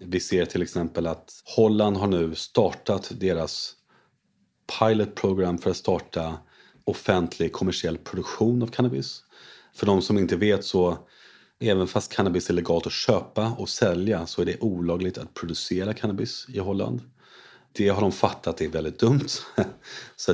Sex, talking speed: male, 150 wpm